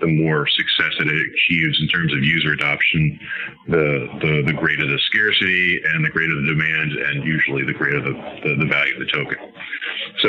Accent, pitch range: American, 80-95 Hz